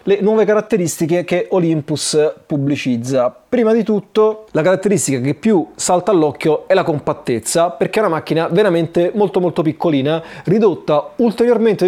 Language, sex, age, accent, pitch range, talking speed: Italian, male, 30-49, native, 155-210 Hz, 140 wpm